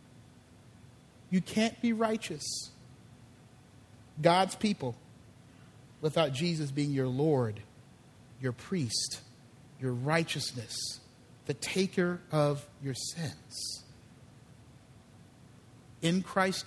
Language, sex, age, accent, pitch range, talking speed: English, male, 50-69, American, 125-170 Hz, 80 wpm